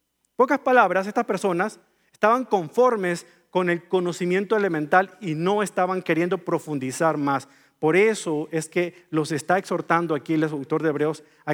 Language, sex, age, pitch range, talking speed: Spanish, male, 40-59, 155-210 Hz, 155 wpm